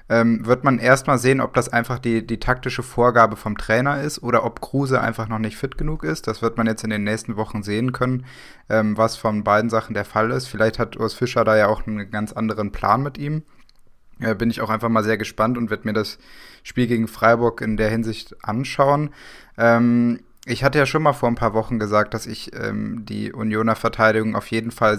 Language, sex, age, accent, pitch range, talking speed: German, male, 20-39, German, 110-125 Hz, 215 wpm